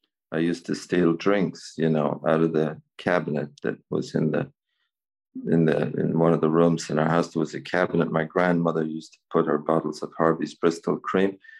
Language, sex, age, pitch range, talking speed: English, male, 40-59, 80-100 Hz, 205 wpm